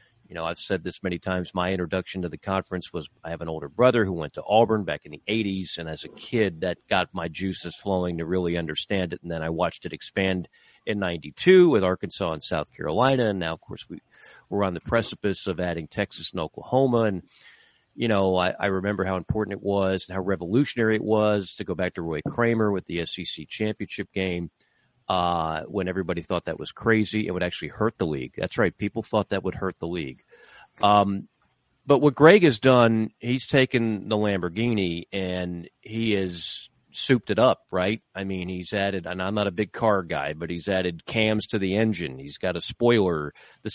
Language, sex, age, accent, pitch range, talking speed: English, male, 40-59, American, 90-110 Hz, 210 wpm